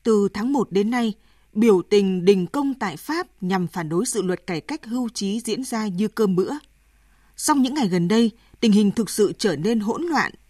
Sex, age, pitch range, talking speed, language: female, 20-39, 185-245 Hz, 215 wpm, Vietnamese